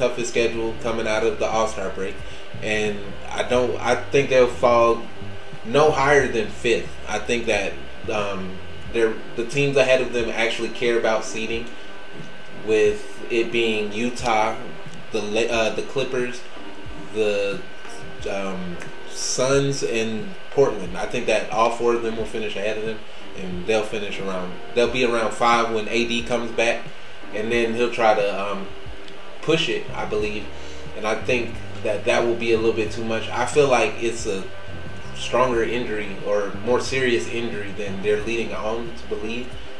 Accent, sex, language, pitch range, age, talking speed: American, male, English, 100-120 Hz, 20-39, 165 wpm